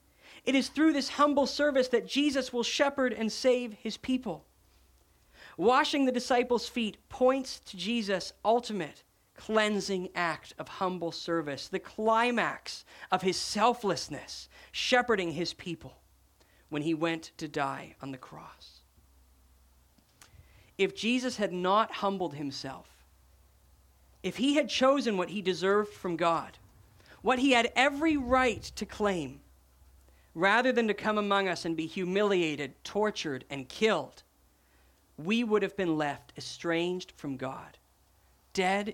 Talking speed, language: 135 wpm, English